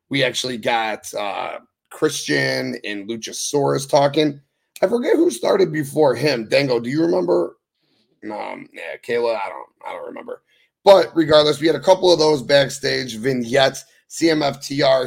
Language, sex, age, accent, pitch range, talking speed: English, male, 30-49, American, 135-190 Hz, 150 wpm